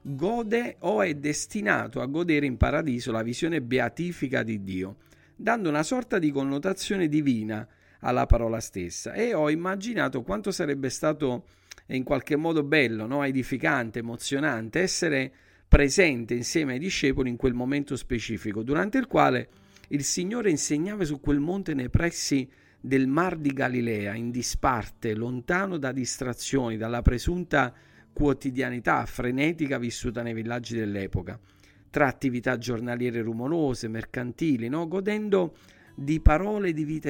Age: 50-69